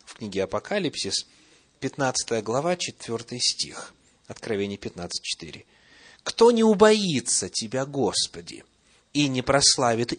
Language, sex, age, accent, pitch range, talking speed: Russian, male, 30-49, native, 130-170 Hz, 95 wpm